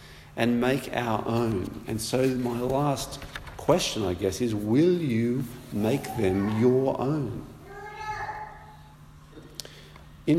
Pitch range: 100-140 Hz